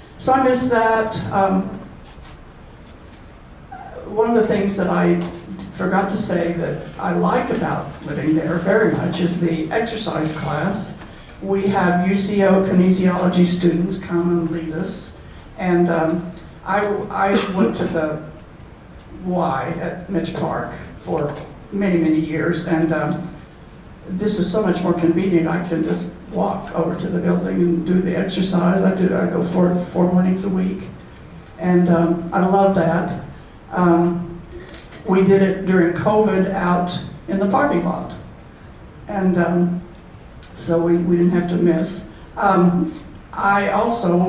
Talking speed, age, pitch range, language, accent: 145 wpm, 60-79, 165-190 Hz, English, American